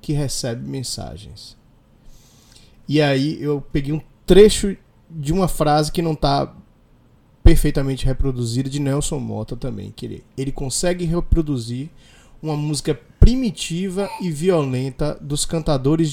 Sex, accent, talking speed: male, Brazilian, 125 wpm